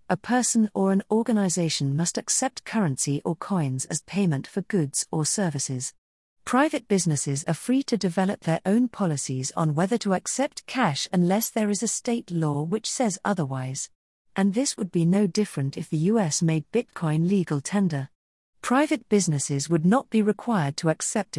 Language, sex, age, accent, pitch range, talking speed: English, female, 40-59, British, 155-215 Hz, 170 wpm